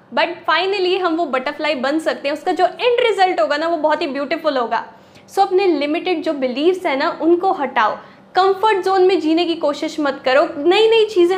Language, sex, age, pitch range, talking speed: Hindi, female, 10-29, 300-380 Hz, 205 wpm